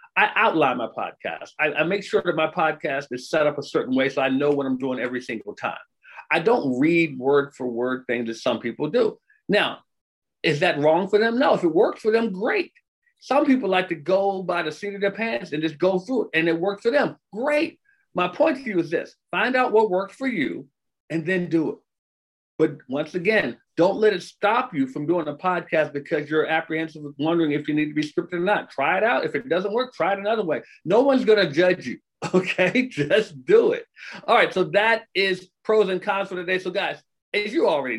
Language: English